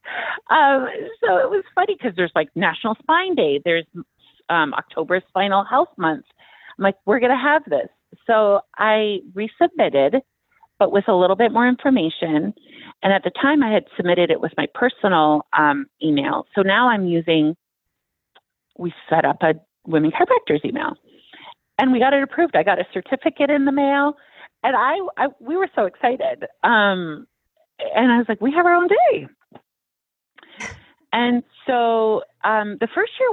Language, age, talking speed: English, 40-59, 165 wpm